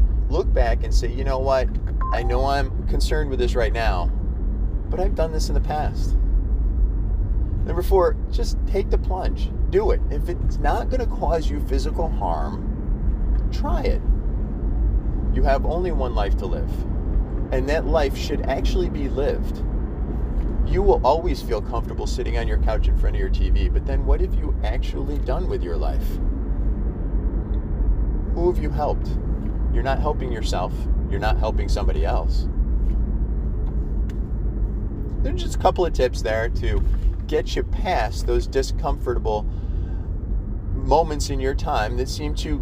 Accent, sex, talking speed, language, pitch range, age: American, male, 155 wpm, English, 70-100 Hz, 30-49